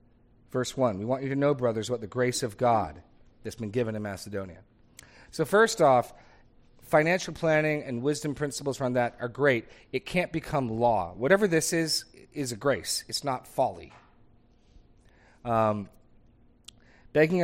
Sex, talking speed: male, 155 wpm